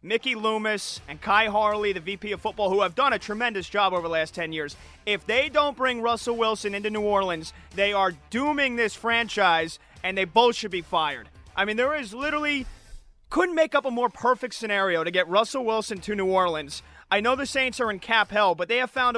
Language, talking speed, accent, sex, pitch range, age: English, 220 wpm, American, male, 195-250 Hz, 30-49